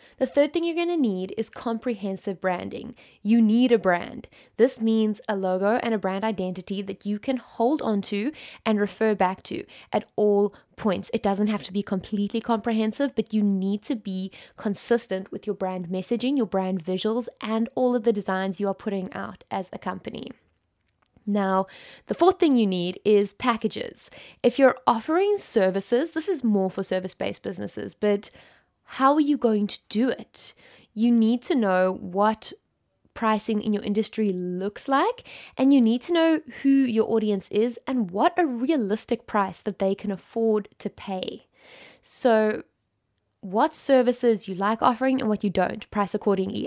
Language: English